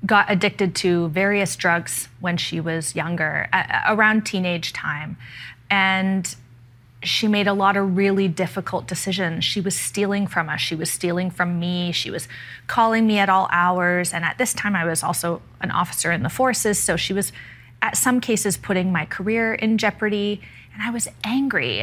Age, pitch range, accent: 30-49, 170-210 Hz, American